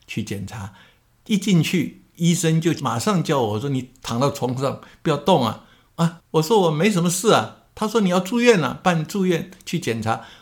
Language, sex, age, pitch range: Chinese, male, 60-79, 115-165 Hz